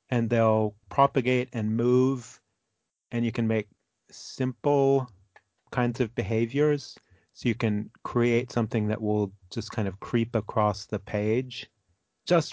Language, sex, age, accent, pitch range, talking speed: English, male, 40-59, American, 105-125 Hz, 135 wpm